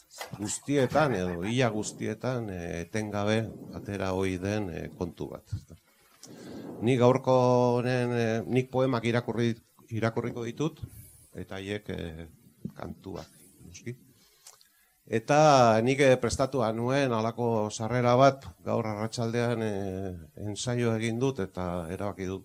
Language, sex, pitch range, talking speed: Spanish, male, 100-125 Hz, 105 wpm